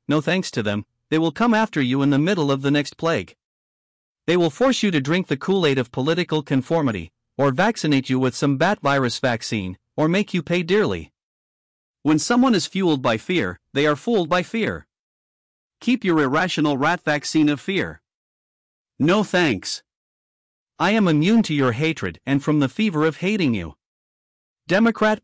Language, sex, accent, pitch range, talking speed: English, male, American, 125-175 Hz, 175 wpm